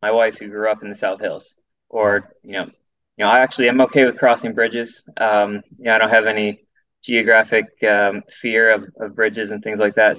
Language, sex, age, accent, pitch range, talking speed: English, male, 20-39, American, 100-120 Hz, 225 wpm